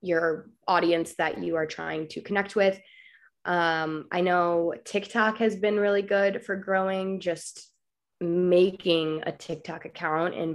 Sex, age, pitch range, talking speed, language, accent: female, 20-39, 160-190 Hz, 140 wpm, English, American